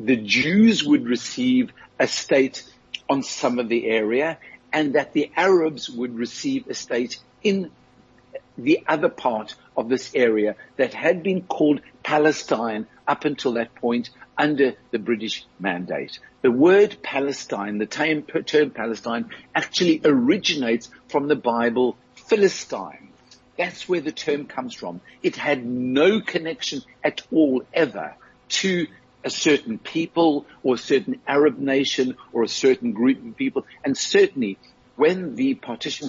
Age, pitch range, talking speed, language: 60-79, 115-165 Hz, 140 wpm, English